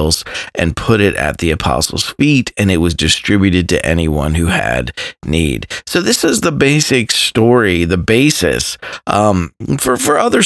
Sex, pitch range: male, 85-120 Hz